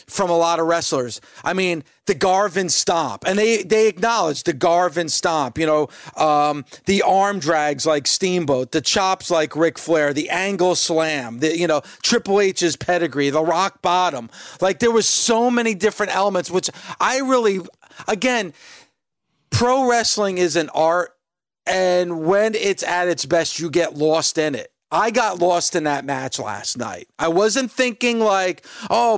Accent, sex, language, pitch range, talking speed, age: American, male, English, 165-215 Hz, 170 wpm, 40-59